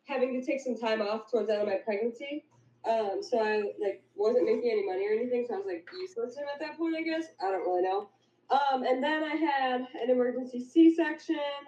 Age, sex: 20-39, female